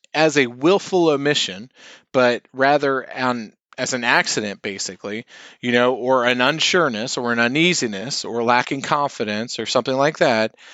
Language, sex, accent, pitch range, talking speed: English, male, American, 115-145 Hz, 145 wpm